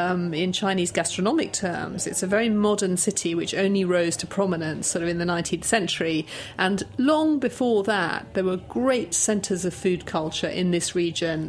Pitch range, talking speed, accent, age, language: 170-195 Hz, 185 wpm, British, 30-49, English